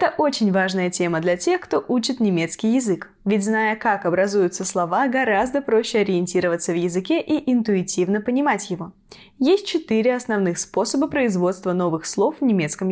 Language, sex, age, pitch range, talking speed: Russian, female, 20-39, 185-260 Hz, 155 wpm